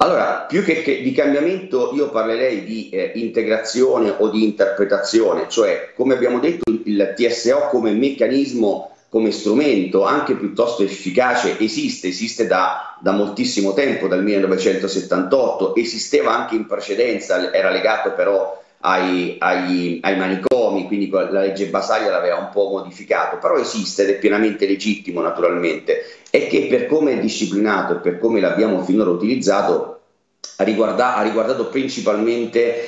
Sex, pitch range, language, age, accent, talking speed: male, 100-145 Hz, Italian, 40-59, native, 135 wpm